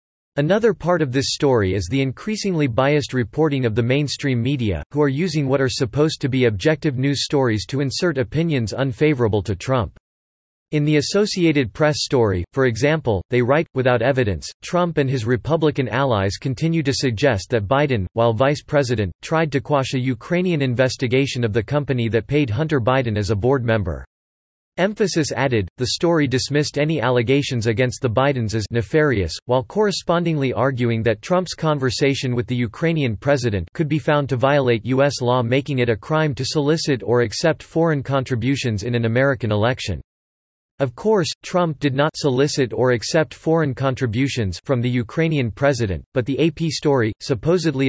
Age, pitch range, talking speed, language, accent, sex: 40-59, 115-150 Hz, 170 wpm, English, American, male